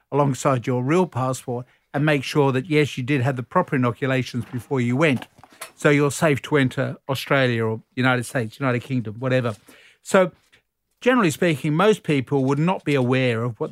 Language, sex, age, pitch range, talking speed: English, male, 50-69, 125-155 Hz, 180 wpm